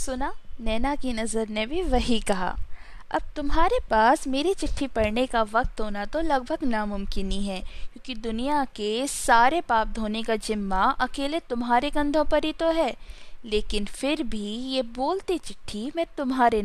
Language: Hindi